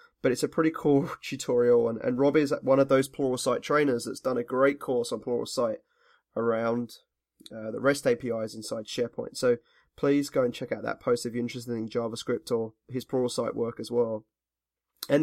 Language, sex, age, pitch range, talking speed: English, male, 20-39, 120-150 Hz, 195 wpm